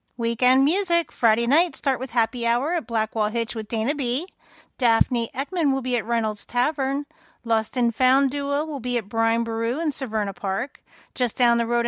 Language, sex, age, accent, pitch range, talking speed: English, female, 40-59, American, 225-300 Hz, 185 wpm